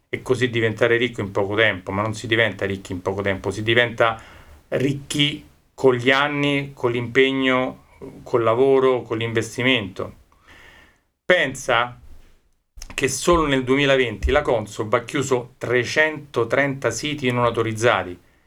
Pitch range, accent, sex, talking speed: 115-145 Hz, native, male, 130 wpm